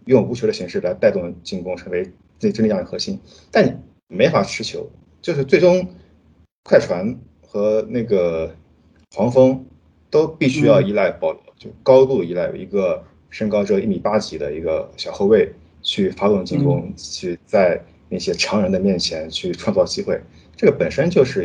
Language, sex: Chinese, male